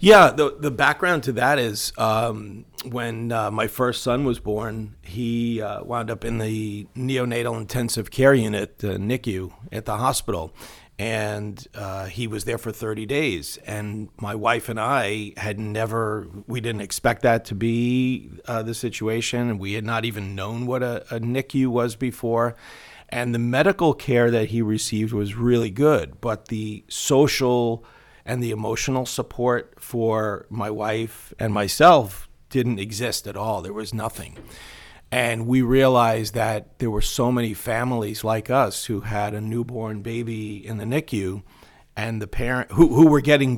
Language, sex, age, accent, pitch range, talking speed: English, male, 40-59, American, 105-125 Hz, 165 wpm